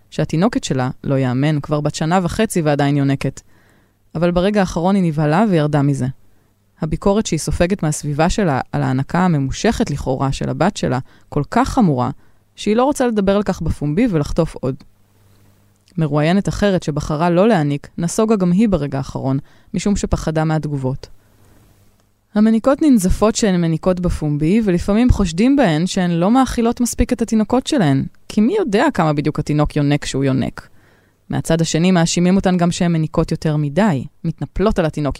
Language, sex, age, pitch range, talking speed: Hebrew, female, 20-39, 135-185 Hz, 155 wpm